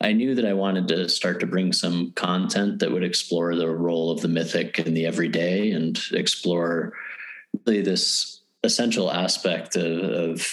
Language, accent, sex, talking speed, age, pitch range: English, American, male, 165 wpm, 30-49, 85-95 Hz